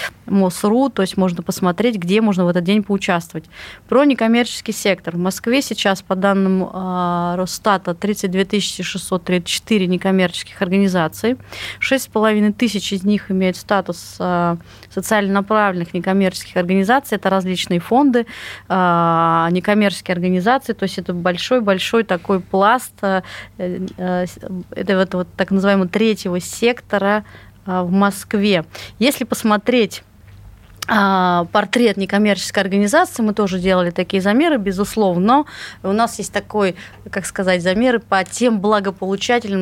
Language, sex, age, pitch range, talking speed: Russian, female, 30-49, 185-215 Hz, 110 wpm